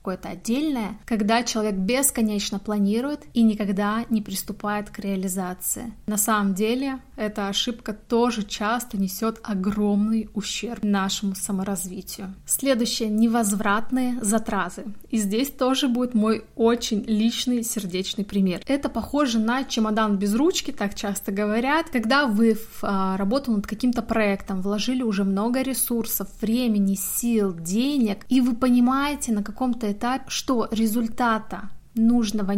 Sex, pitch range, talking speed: female, 205-235 Hz, 125 wpm